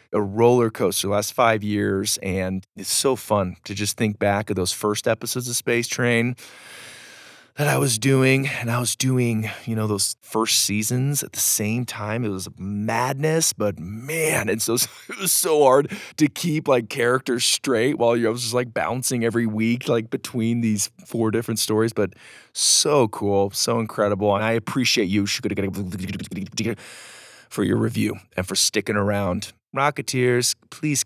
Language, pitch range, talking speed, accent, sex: English, 105-140 Hz, 165 wpm, American, male